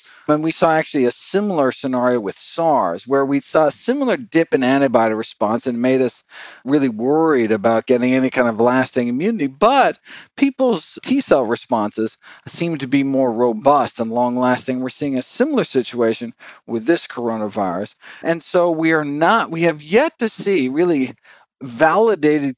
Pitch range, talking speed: 130-170 Hz, 165 wpm